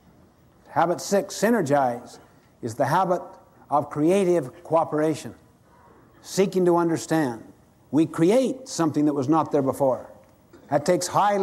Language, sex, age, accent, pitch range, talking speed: English, male, 60-79, American, 130-170 Hz, 120 wpm